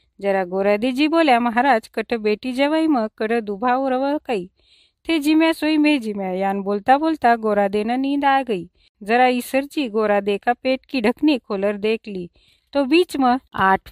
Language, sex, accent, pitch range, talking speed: Hindi, female, native, 215-280 Hz, 155 wpm